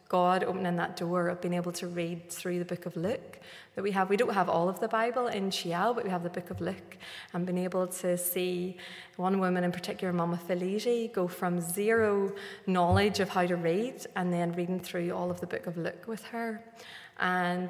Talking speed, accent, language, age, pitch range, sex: 220 wpm, British, English, 20-39, 175-200 Hz, female